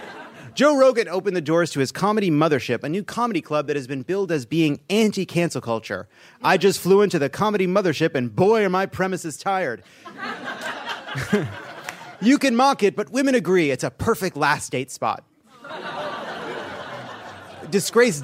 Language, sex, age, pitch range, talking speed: English, male, 30-49, 145-200 Hz, 155 wpm